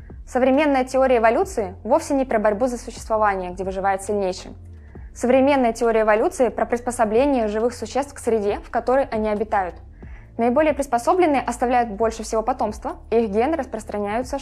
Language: Russian